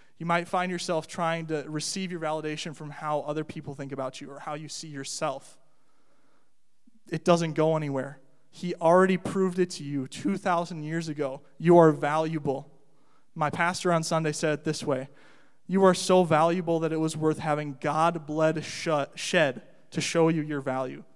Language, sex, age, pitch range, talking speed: English, male, 20-39, 140-160 Hz, 175 wpm